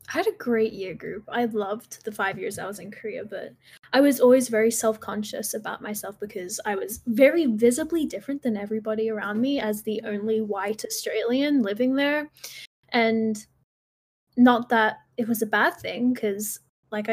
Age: 10-29